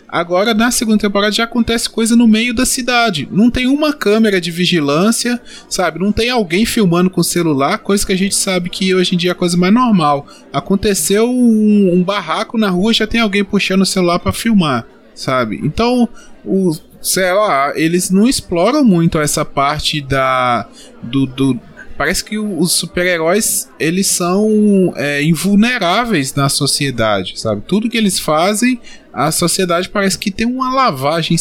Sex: male